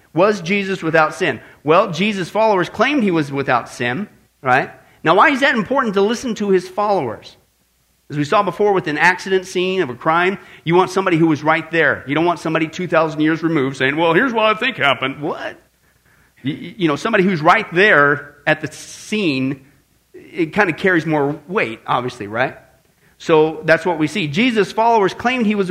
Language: English